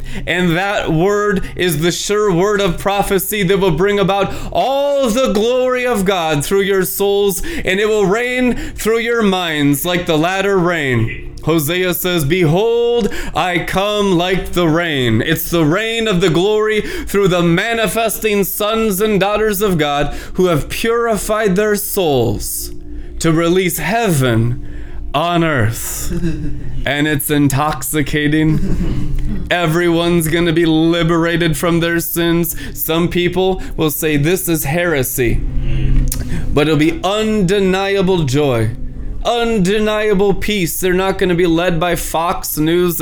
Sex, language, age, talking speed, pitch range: male, English, 20-39, 135 wpm, 155-200 Hz